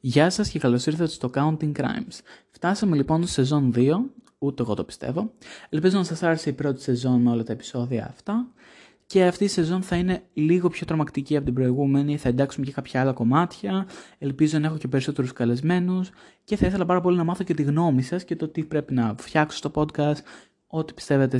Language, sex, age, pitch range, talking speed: Greek, male, 20-39, 130-170 Hz, 210 wpm